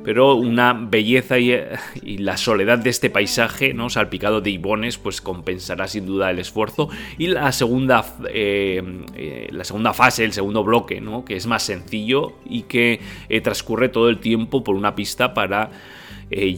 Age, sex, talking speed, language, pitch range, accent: 30-49, male, 175 wpm, Spanish, 95-120 Hz, Spanish